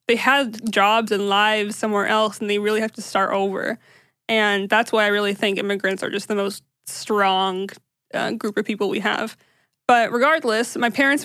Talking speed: 190 wpm